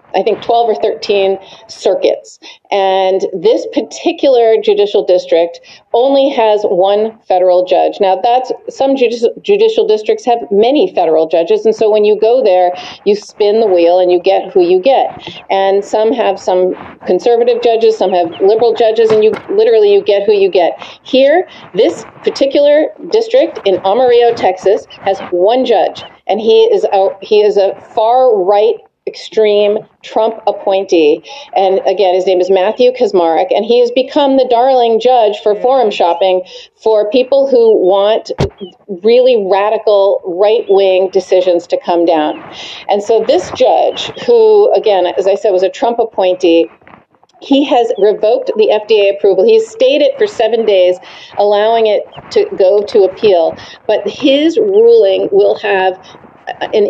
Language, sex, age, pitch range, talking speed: English, female, 40-59, 190-265 Hz, 155 wpm